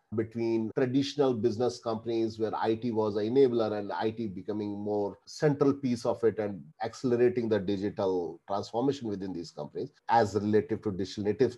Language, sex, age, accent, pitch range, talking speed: English, male, 30-49, Indian, 110-135 Hz, 155 wpm